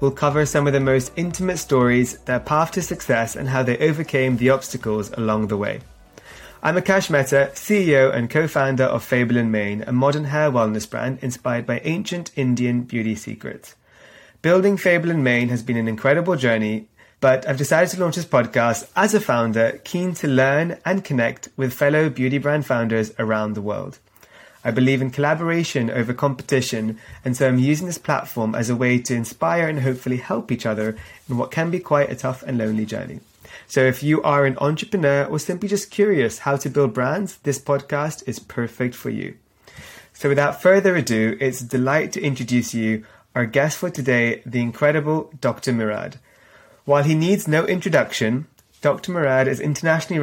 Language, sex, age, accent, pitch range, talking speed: English, male, 30-49, British, 120-155 Hz, 185 wpm